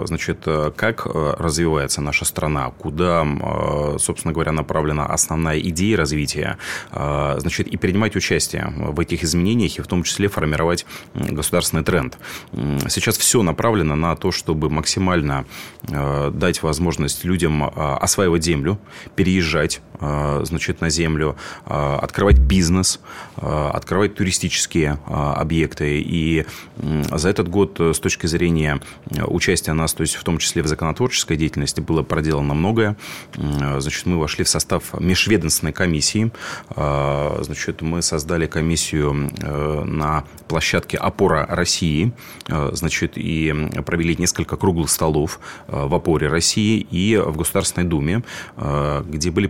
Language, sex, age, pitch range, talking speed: Russian, male, 30-49, 75-90 Hz, 120 wpm